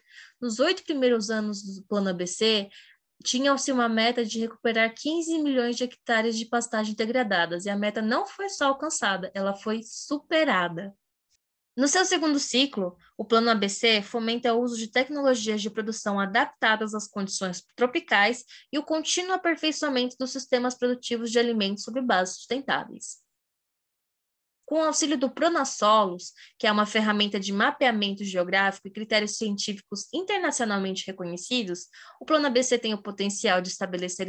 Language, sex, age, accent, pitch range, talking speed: Portuguese, female, 20-39, Brazilian, 205-275 Hz, 145 wpm